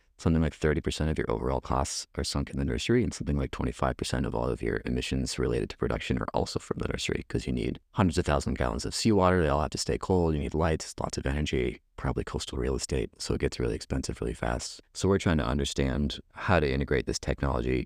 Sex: male